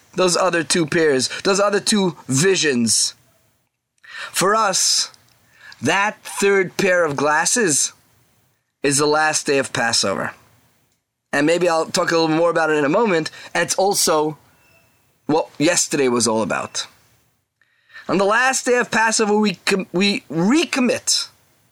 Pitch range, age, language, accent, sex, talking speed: 155-225 Hz, 30-49, English, American, male, 135 wpm